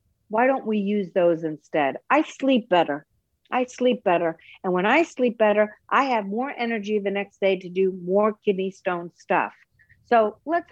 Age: 50-69